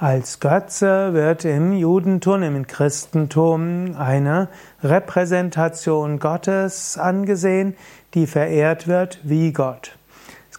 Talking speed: 95 wpm